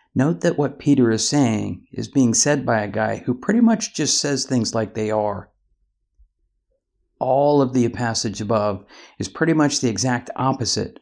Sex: male